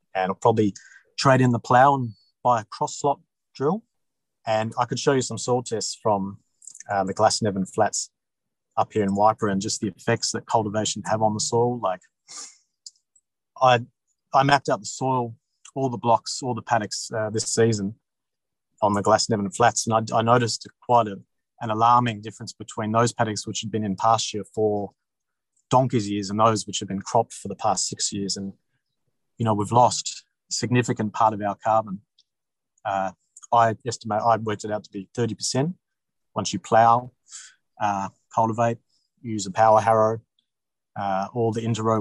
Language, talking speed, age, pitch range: English, 175 wpm, 30-49, 105-120 Hz